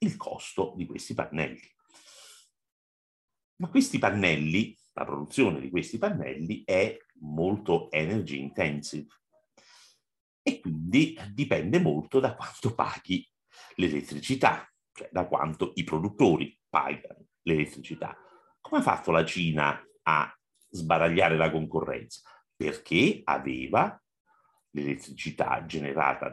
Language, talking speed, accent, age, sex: Italian, 105 wpm, native, 50-69, male